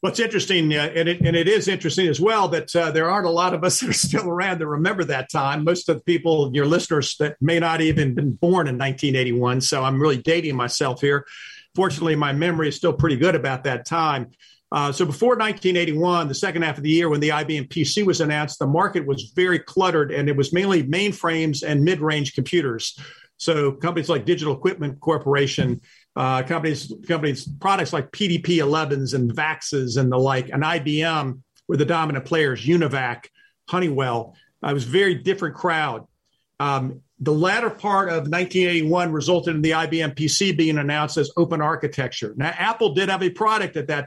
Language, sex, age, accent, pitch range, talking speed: English, male, 50-69, American, 145-175 Hz, 195 wpm